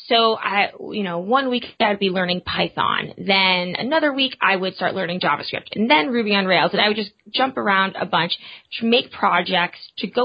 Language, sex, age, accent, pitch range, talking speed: English, female, 20-39, American, 185-225 Hz, 210 wpm